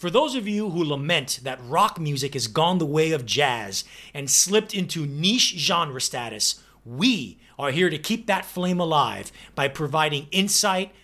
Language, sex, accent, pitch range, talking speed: English, male, American, 115-180 Hz, 175 wpm